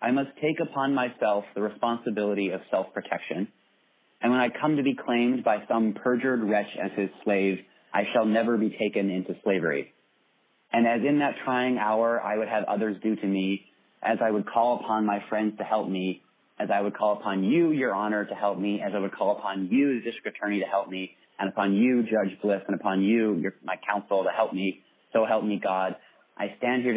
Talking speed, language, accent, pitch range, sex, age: 215 wpm, English, American, 100-115 Hz, male, 30-49